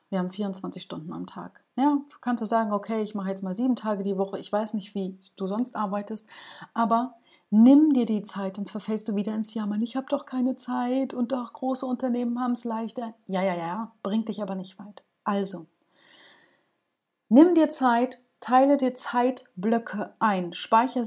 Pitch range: 195-240 Hz